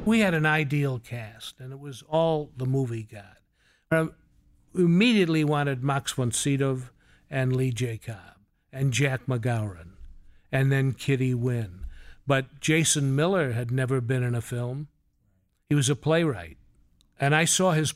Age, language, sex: 50-69, English, male